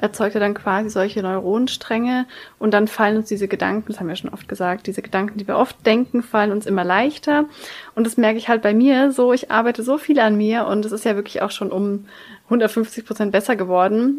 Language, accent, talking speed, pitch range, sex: German, German, 230 wpm, 205-255 Hz, female